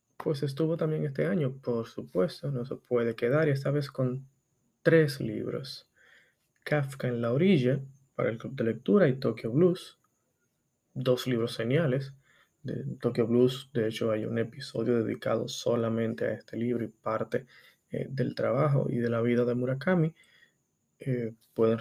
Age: 20-39